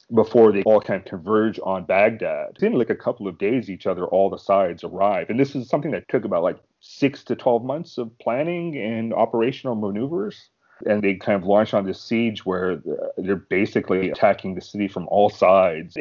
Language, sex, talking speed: English, male, 200 wpm